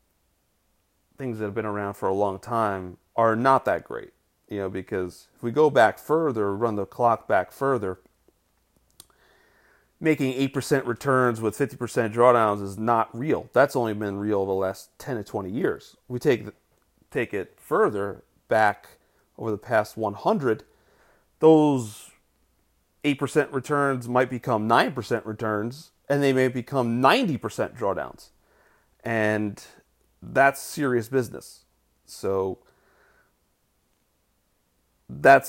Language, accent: English, American